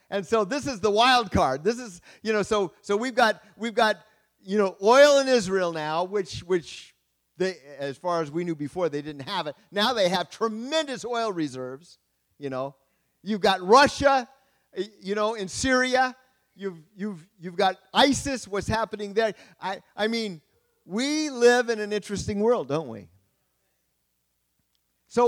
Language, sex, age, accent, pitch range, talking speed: English, male, 50-69, American, 130-210 Hz, 170 wpm